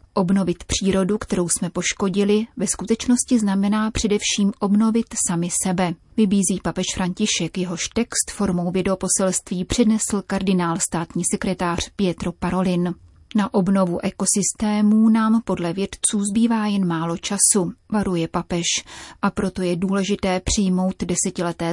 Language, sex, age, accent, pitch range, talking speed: Czech, female, 30-49, native, 180-205 Hz, 120 wpm